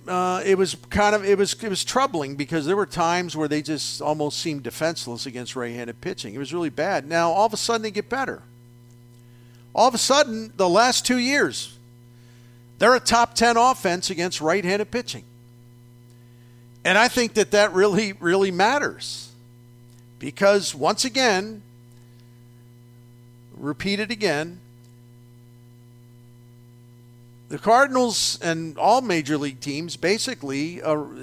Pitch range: 120-190 Hz